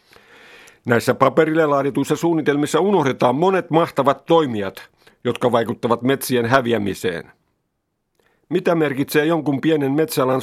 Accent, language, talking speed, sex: native, Finnish, 100 wpm, male